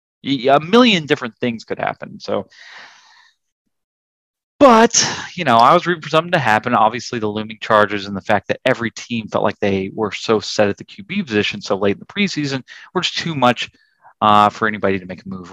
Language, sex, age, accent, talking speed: English, male, 30-49, American, 205 wpm